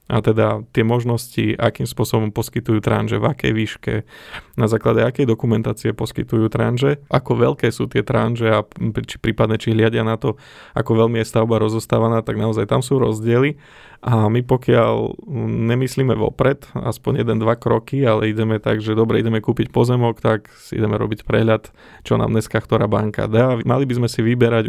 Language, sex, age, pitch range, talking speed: Slovak, male, 20-39, 110-120 Hz, 175 wpm